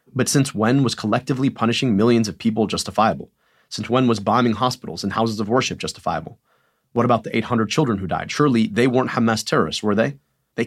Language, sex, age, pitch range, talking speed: English, male, 30-49, 110-130 Hz, 195 wpm